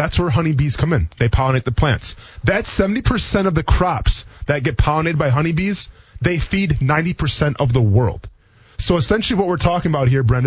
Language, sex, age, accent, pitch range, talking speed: English, male, 20-39, American, 115-165 Hz, 190 wpm